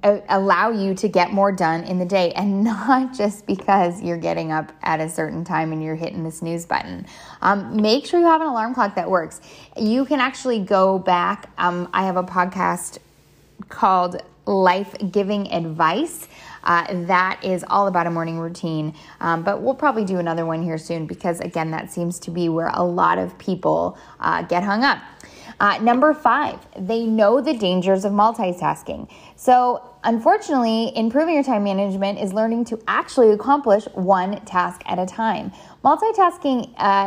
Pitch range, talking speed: 175-225 Hz, 175 wpm